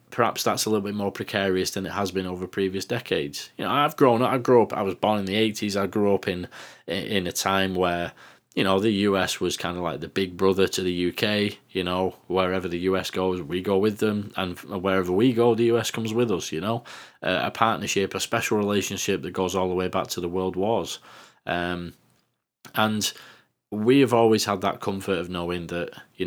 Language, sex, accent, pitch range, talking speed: English, male, British, 90-110 Hz, 225 wpm